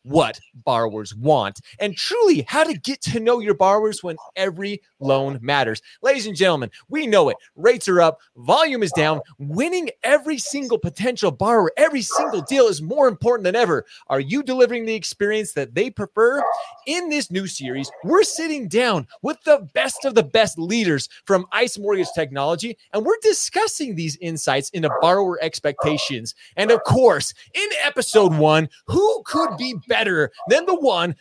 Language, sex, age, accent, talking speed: English, male, 30-49, American, 170 wpm